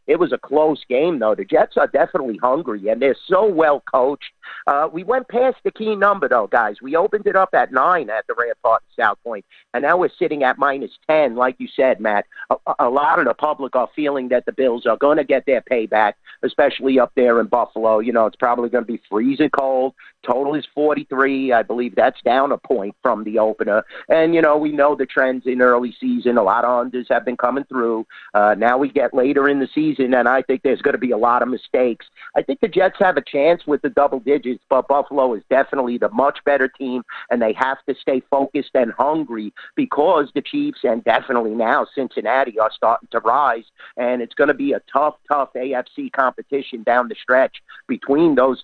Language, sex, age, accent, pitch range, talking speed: English, male, 50-69, American, 125-150 Hz, 225 wpm